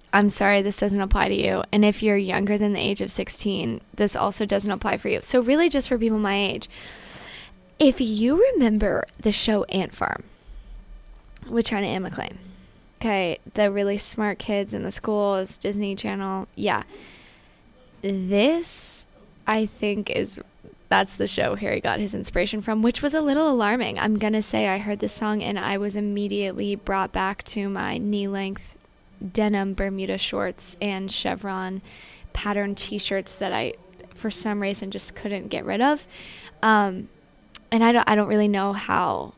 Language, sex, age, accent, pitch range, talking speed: English, female, 10-29, American, 195-220 Hz, 170 wpm